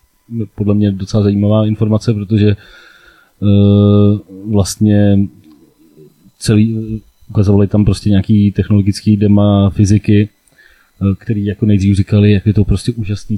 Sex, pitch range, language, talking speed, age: male, 95-105 Hz, Czech, 115 wpm, 30-49